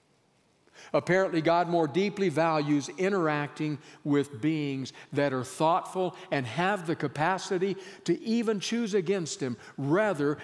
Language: English